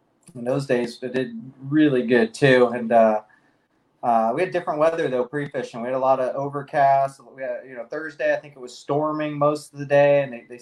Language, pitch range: English, 120-145 Hz